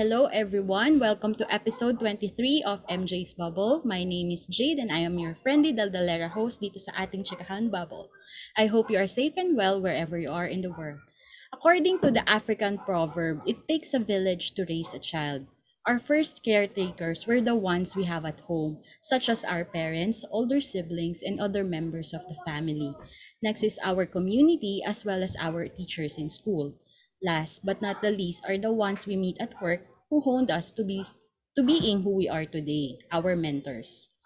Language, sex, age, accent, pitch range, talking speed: Filipino, female, 20-39, native, 170-230 Hz, 190 wpm